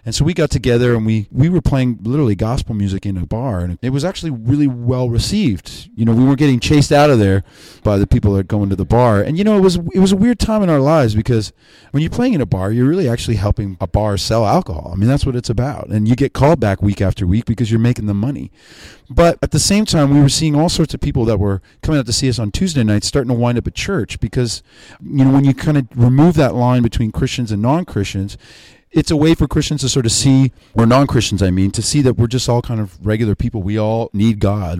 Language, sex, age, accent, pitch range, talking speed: English, male, 30-49, American, 105-140 Hz, 270 wpm